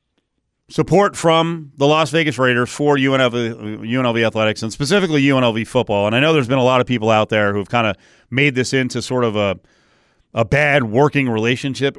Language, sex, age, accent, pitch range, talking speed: English, male, 40-59, American, 120-150 Hz, 190 wpm